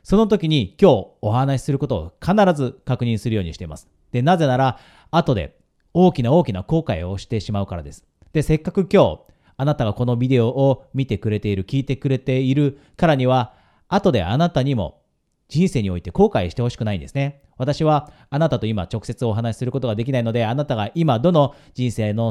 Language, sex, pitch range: Japanese, male, 105-155 Hz